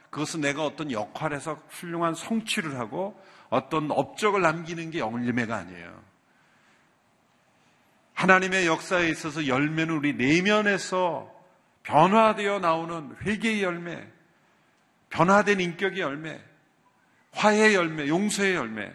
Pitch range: 115-180 Hz